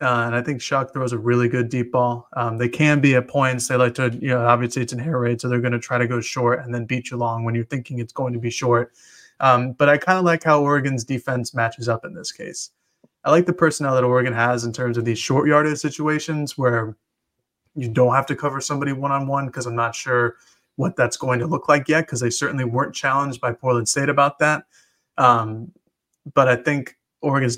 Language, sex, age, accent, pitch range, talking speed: English, male, 20-39, American, 120-140 Hz, 245 wpm